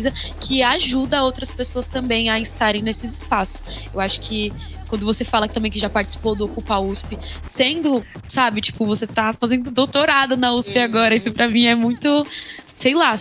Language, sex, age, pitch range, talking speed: Portuguese, female, 10-29, 210-245 Hz, 175 wpm